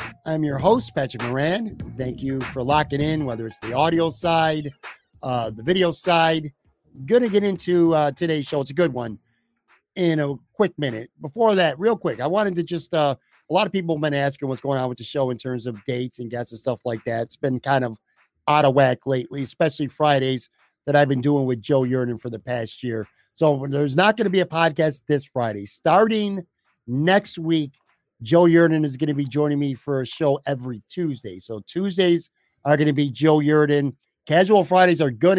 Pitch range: 130-160 Hz